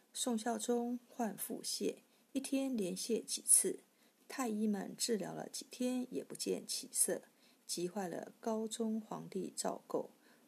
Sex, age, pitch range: female, 50-69, 210-250 Hz